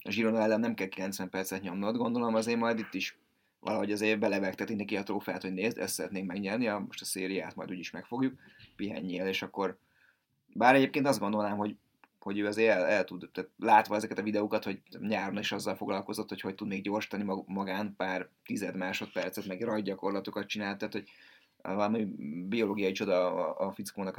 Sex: male